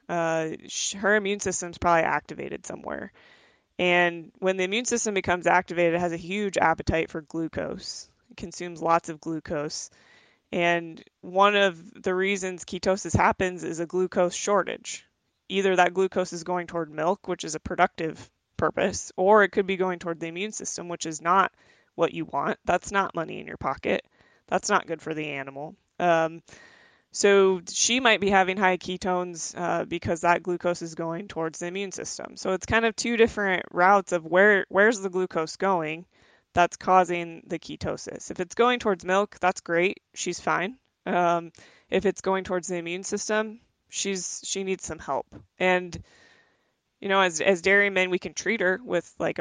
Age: 20-39